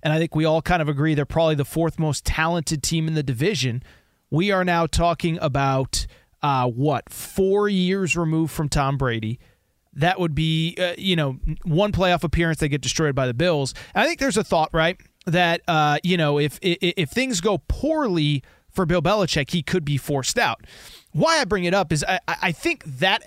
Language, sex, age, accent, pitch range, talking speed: English, male, 30-49, American, 145-205 Hz, 210 wpm